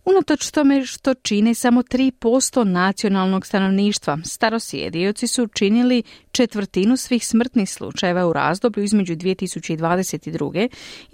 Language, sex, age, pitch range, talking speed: Croatian, female, 40-59, 170-245 Hz, 110 wpm